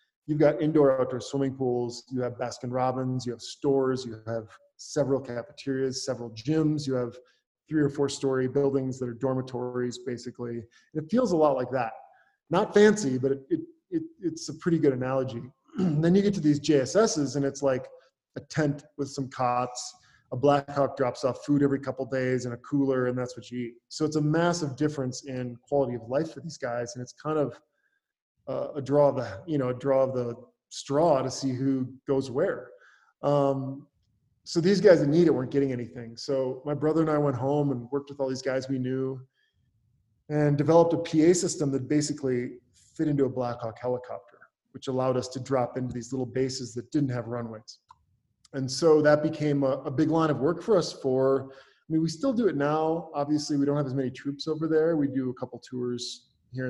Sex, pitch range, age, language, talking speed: male, 125-150 Hz, 20-39, English, 205 wpm